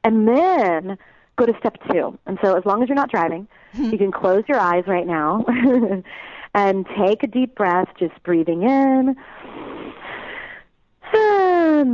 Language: English